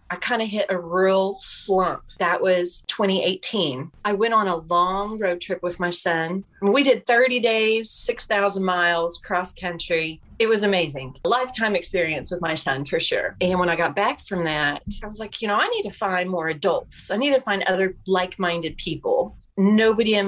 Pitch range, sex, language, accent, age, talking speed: 180-245 Hz, female, English, American, 30-49, 190 wpm